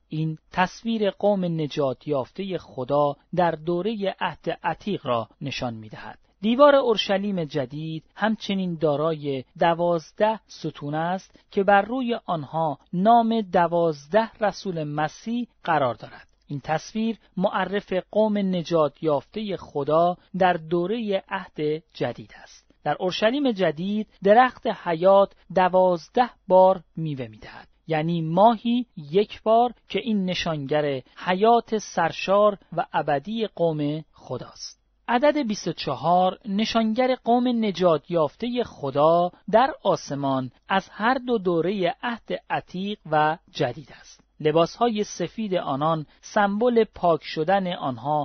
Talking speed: 115 wpm